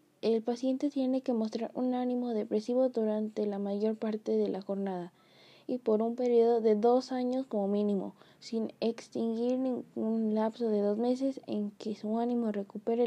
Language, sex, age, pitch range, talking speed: Spanish, female, 20-39, 215-250 Hz, 165 wpm